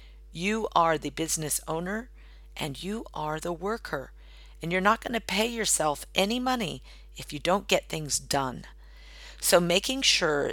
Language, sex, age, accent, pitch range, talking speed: English, female, 50-69, American, 155-200 Hz, 155 wpm